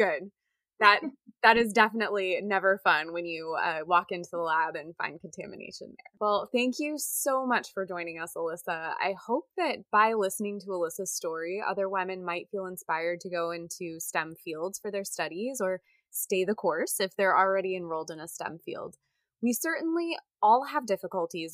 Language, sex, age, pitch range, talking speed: English, female, 20-39, 175-225 Hz, 180 wpm